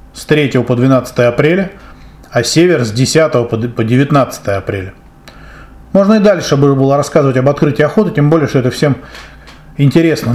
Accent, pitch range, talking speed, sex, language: native, 130-165 Hz, 150 wpm, male, Russian